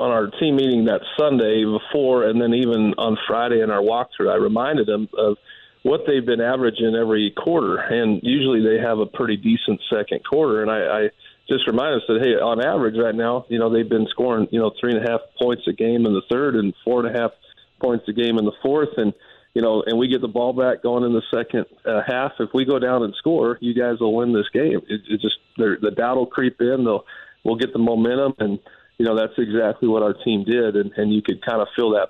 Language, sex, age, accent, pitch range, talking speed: English, male, 40-59, American, 110-125 Hz, 245 wpm